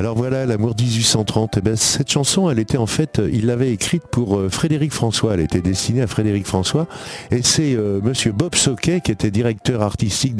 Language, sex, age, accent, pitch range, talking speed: French, male, 50-69, French, 95-125 Hz, 180 wpm